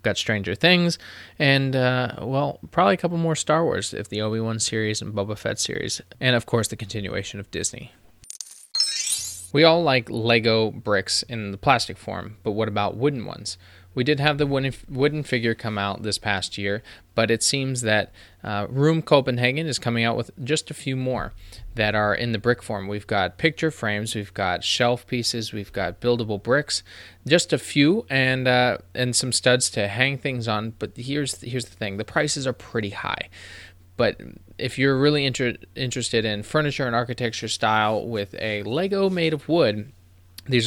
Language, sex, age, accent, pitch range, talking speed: English, male, 20-39, American, 105-130 Hz, 185 wpm